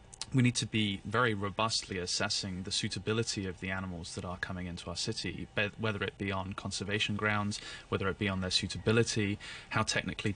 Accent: British